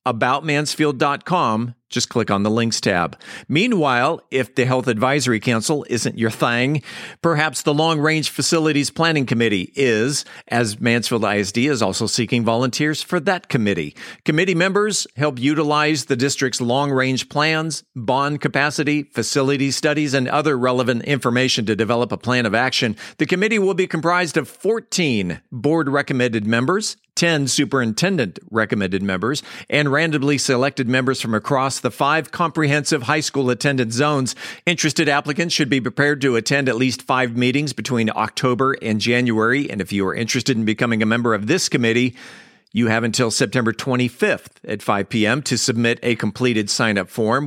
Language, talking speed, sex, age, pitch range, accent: English, 155 wpm, male, 50-69, 120-150 Hz, American